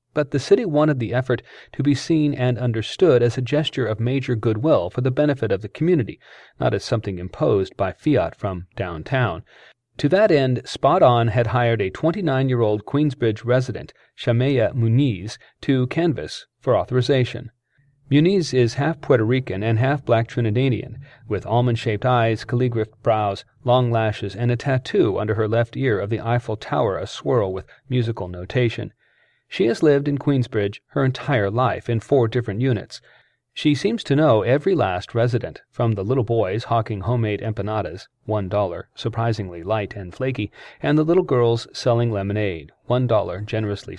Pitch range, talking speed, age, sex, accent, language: 110-135 Hz, 165 wpm, 40-59, male, American, English